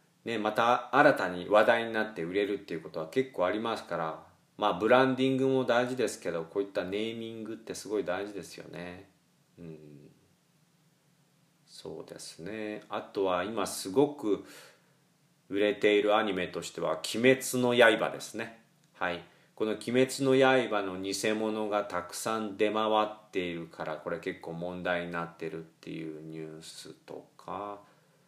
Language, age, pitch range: Japanese, 40-59, 90-150 Hz